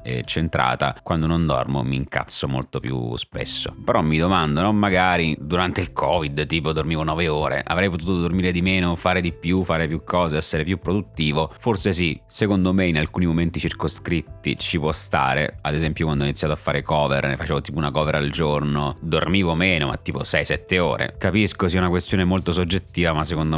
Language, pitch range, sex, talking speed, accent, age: Italian, 70-85 Hz, male, 195 wpm, native, 30-49